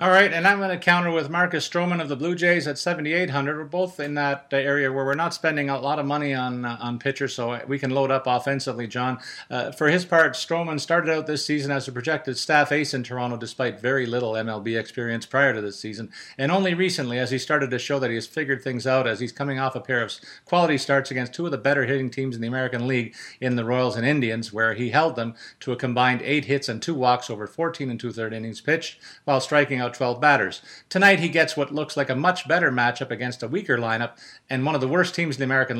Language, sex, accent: English, male, American